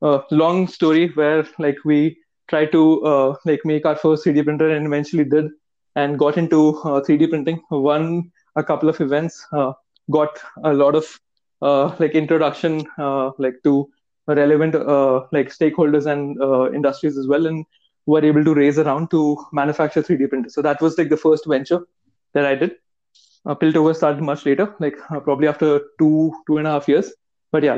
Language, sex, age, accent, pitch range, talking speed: English, male, 20-39, Indian, 145-165 Hz, 190 wpm